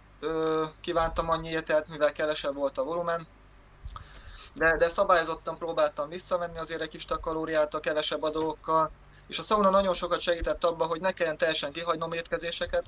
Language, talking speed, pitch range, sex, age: Hungarian, 160 wpm, 155-180 Hz, male, 20-39